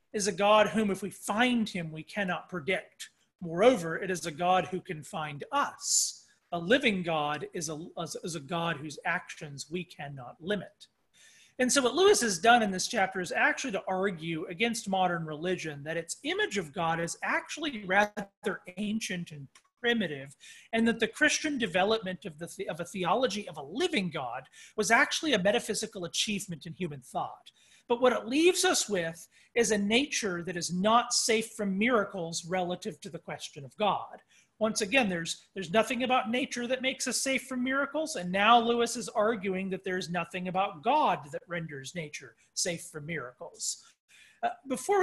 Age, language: 40-59, English